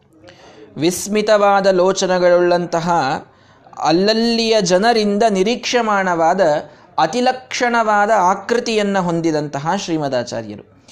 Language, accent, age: Kannada, native, 20-39